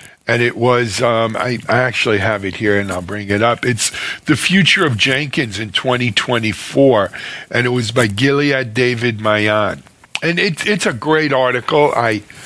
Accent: American